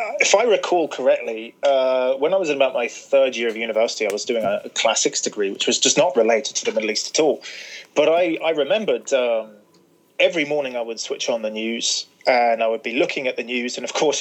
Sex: male